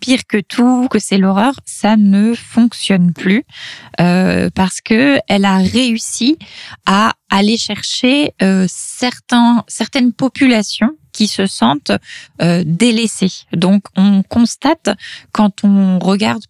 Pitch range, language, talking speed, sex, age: 185-220 Hz, French, 125 wpm, female, 20-39